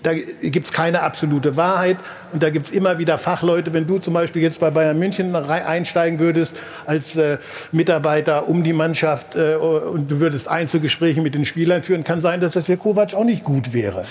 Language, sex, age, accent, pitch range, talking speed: German, male, 60-79, German, 155-180 Hz, 205 wpm